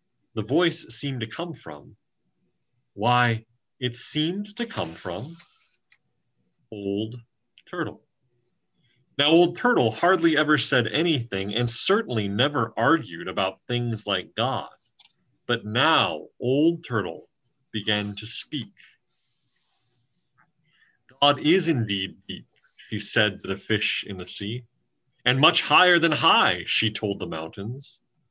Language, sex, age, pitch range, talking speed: English, male, 30-49, 110-160 Hz, 120 wpm